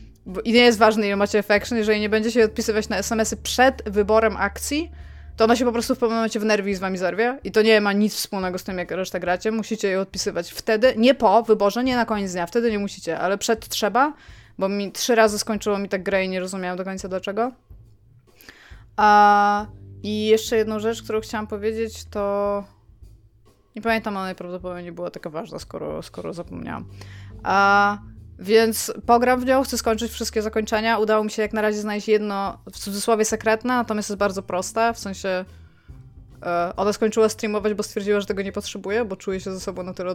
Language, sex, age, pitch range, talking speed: Polish, female, 20-39, 185-220 Hz, 200 wpm